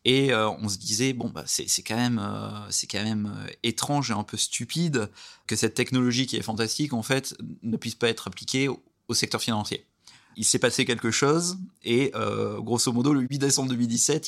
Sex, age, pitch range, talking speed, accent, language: male, 30-49, 110-135 Hz, 215 wpm, French, French